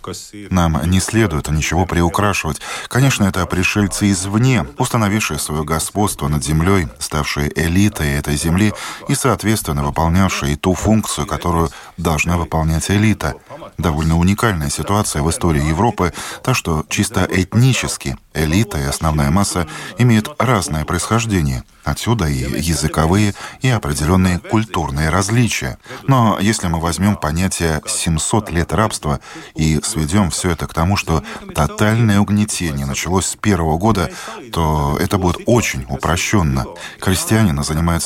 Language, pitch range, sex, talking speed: Russian, 80-105 Hz, male, 125 wpm